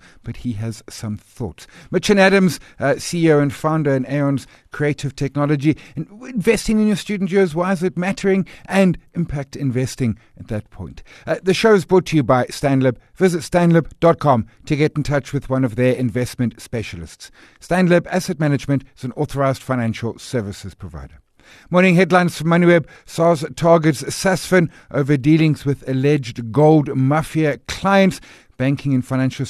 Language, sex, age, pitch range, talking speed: English, male, 50-69, 125-165 Hz, 160 wpm